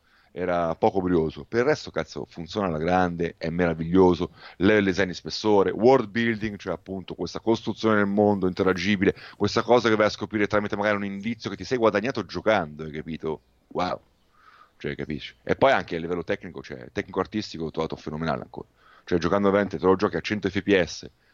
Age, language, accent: 30-49, Italian, native